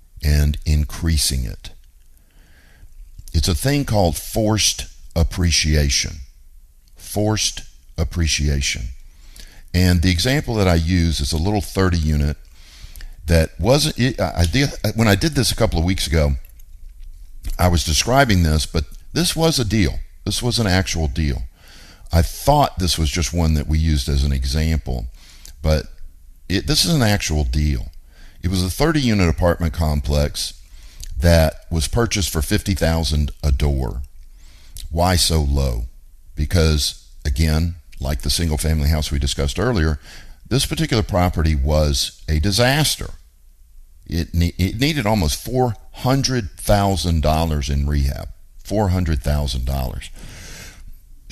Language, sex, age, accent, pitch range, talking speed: English, male, 50-69, American, 75-90 Hz, 125 wpm